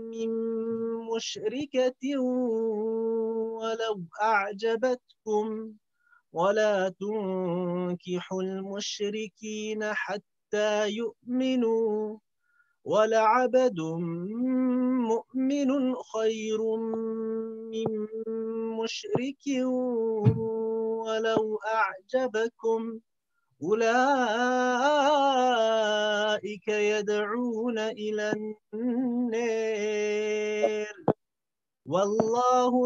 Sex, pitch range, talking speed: male, 210-240 Hz, 35 wpm